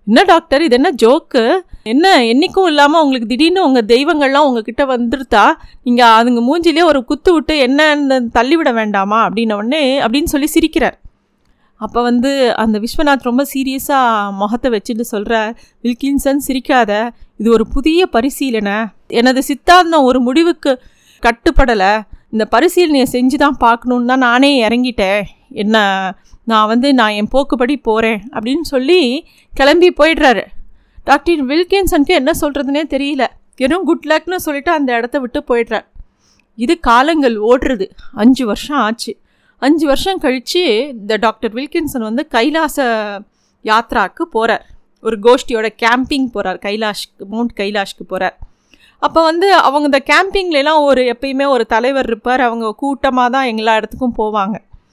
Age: 30-49